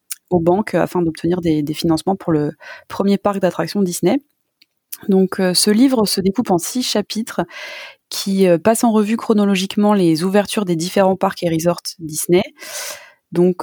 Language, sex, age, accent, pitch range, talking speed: French, female, 20-39, French, 165-200 Hz, 165 wpm